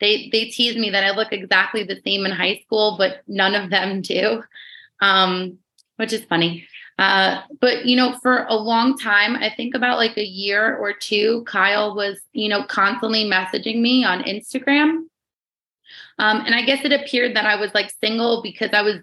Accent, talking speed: American, 190 wpm